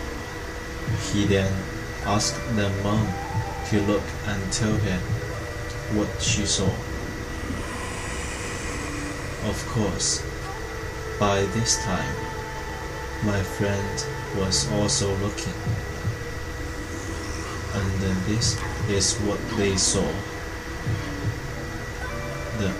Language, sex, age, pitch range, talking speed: English, male, 20-39, 95-105 Hz, 80 wpm